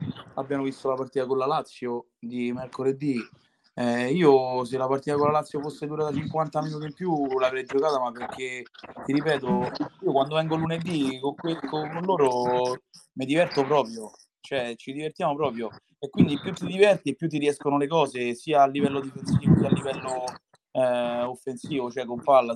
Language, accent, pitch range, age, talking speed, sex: Italian, native, 125-145 Hz, 20-39, 175 wpm, male